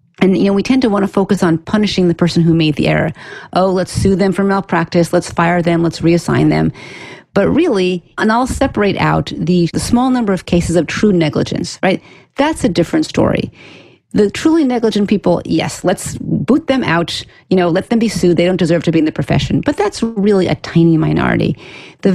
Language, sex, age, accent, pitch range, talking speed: English, female, 40-59, American, 165-210 Hz, 215 wpm